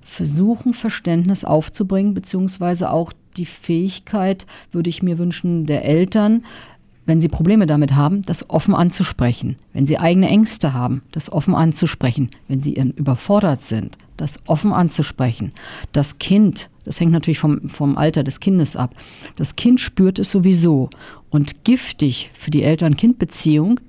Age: 50-69